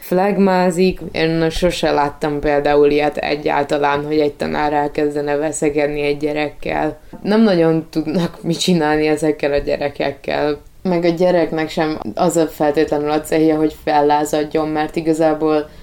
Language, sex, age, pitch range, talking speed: Hungarian, female, 20-39, 150-170 Hz, 130 wpm